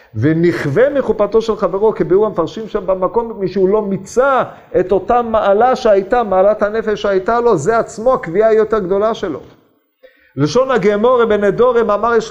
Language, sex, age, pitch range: Hebrew, male, 50-69, 160-225 Hz